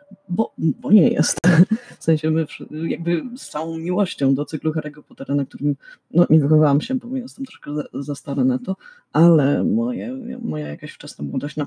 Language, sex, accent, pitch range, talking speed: Polish, female, native, 150-210 Hz, 190 wpm